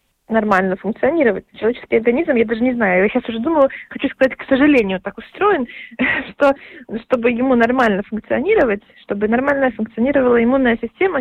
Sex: female